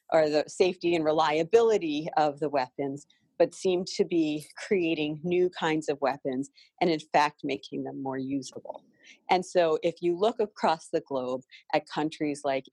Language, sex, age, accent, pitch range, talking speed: English, female, 40-59, American, 140-175 Hz, 165 wpm